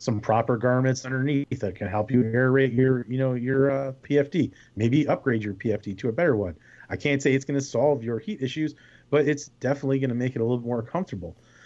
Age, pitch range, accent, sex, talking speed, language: 30-49, 110-135 Hz, American, male, 225 wpm, English